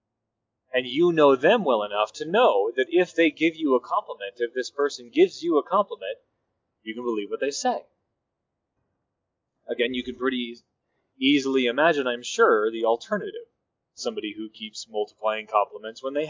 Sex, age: male, 30-49